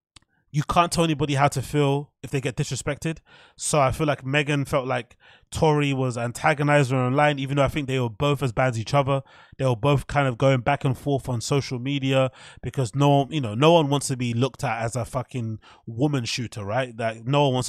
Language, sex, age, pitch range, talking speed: English, male, 20-39, 125-150 Hz, 230 wpm